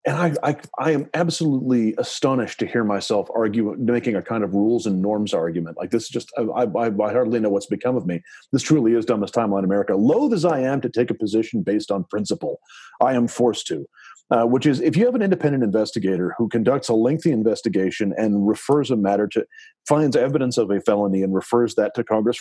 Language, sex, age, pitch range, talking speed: English, male, 30-49, 105-145 Hz, 220 wpm